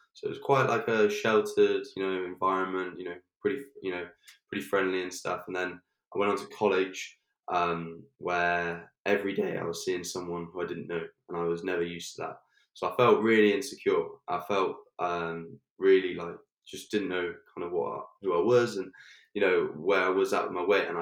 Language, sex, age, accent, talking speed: English, male, 10-29, British, 215 wpm